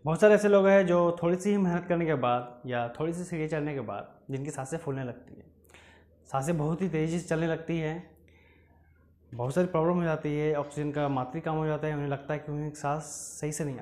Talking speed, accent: 235 wpm, native